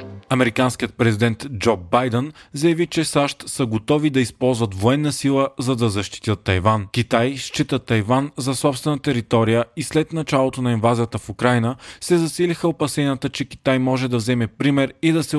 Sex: male